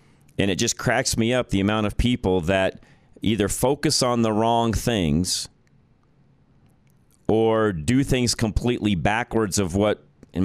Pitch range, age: 90-115 Hz, 40-59